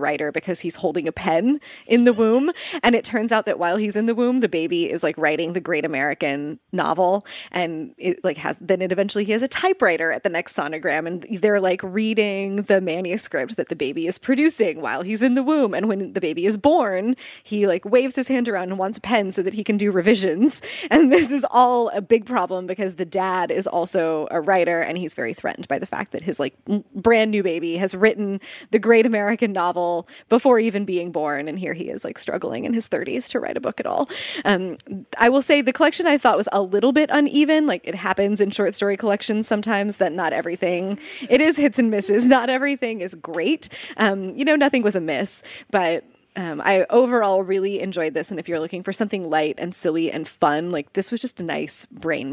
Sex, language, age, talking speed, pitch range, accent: female, English, 20-39, 225 wpm, 180-240 Hz, American